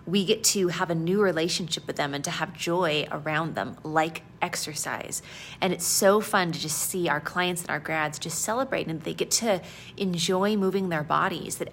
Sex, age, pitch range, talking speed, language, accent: female, 30-49, 160-190 Hz, 205 wpm, English, American